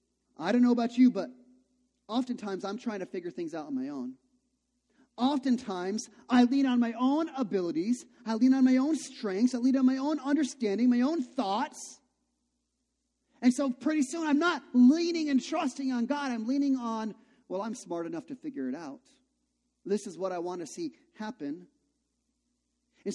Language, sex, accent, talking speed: English, male, American, 180 wpm